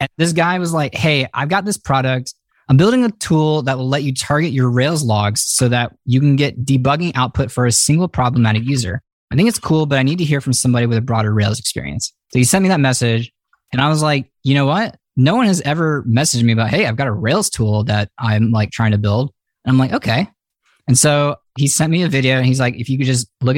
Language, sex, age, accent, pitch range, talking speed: English, male, 20-39, American, 115-145 Hz, 255 wpm